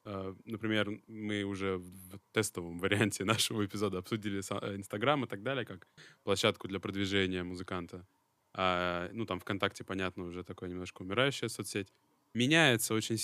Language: Russian